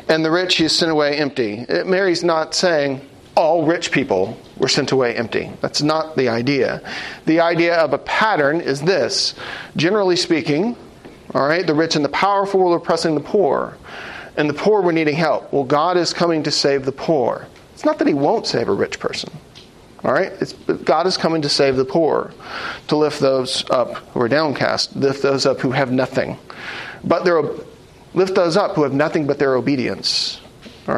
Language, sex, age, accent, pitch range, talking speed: English, male, 40-59, American, 140-175 Hz, 195 wpm